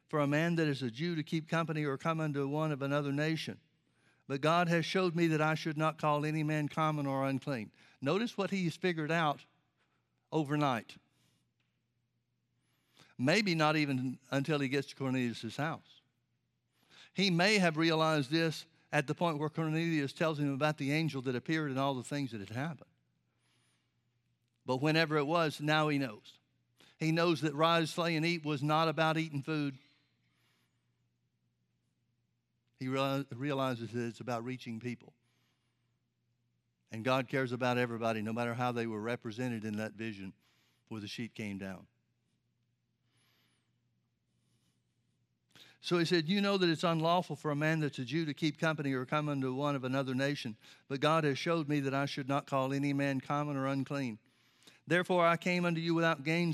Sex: male